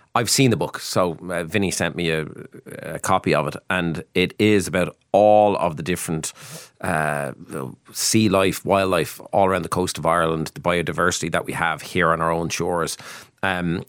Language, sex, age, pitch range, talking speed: English, male, 30-49, 85-105 Hz, 185 wpm